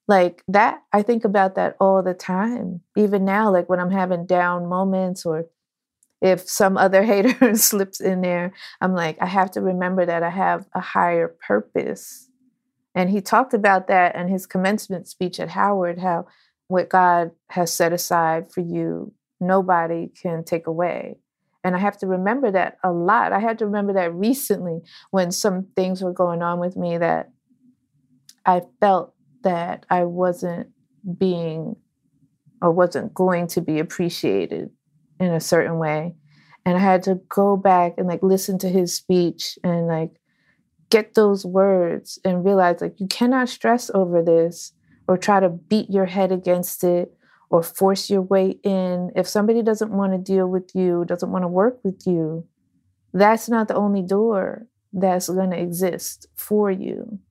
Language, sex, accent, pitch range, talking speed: English, female, American, 175-195 Hz, 170 wpm